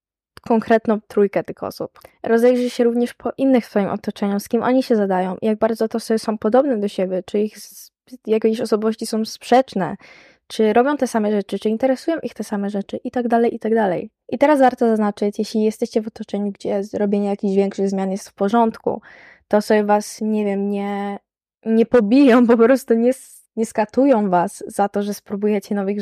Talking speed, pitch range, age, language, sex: 190 wpm, 200-240 Hz, 10-29, Polish, female